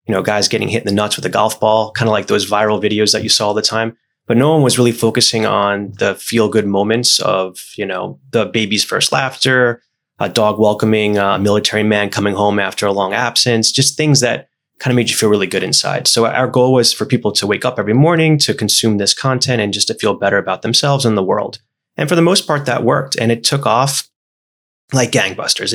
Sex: male